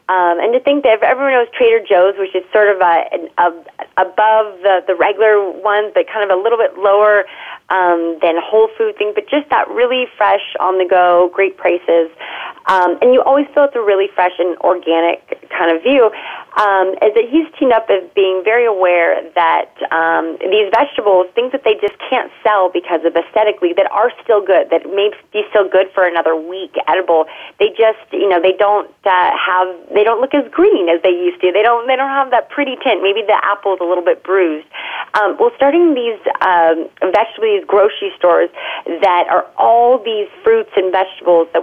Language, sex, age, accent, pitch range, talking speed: English, female, 30-49, American, 180-230 Hz, 210 wpm